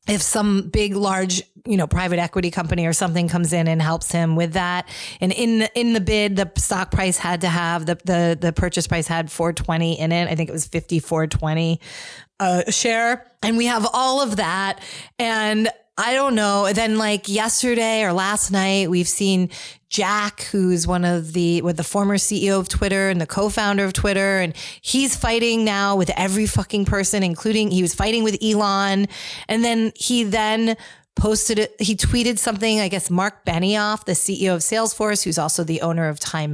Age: 30-49